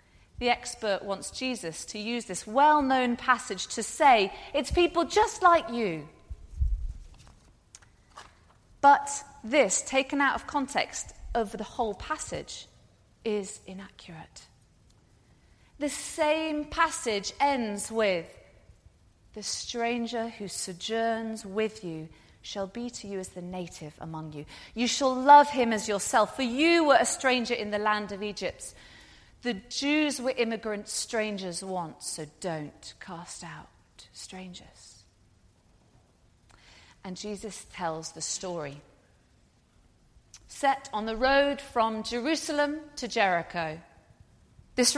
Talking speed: 120 wpm